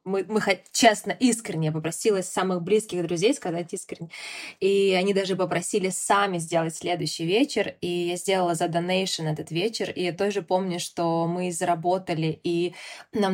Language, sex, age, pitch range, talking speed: Russian, female, 20-39, 175-195 Hz, 155 wpm